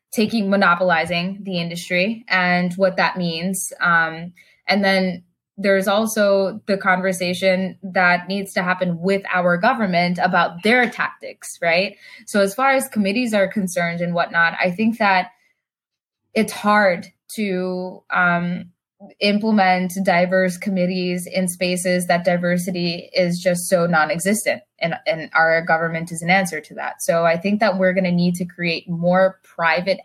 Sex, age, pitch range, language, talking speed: female, 20-39, 175-195 Hz, English, 150 wpm